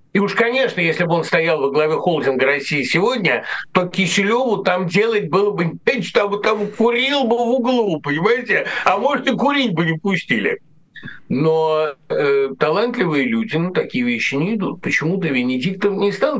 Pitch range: 145-210 Hz